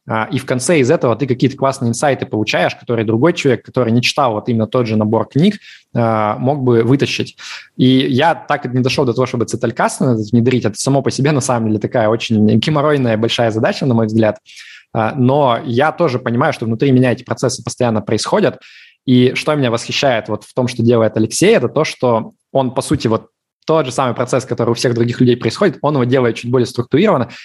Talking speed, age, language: 210 wpm, 20-39, Russian